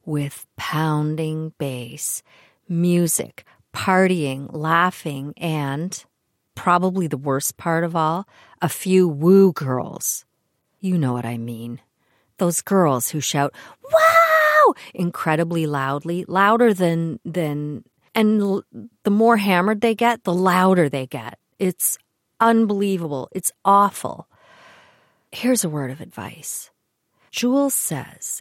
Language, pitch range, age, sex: English, 145-190 Hz, 40-59, female